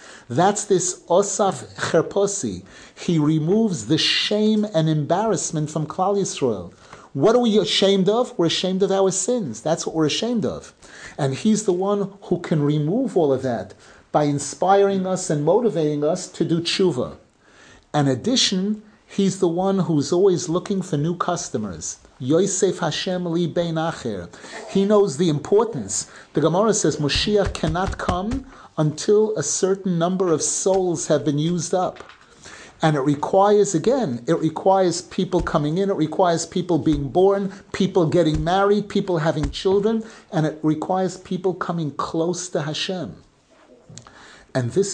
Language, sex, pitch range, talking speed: English, male, 155-195 Hz, 150 wpm